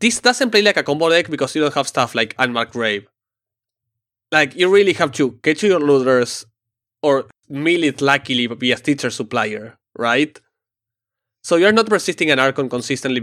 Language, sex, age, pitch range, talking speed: English, male, 20-39, 115-145 Hz, 170 wpm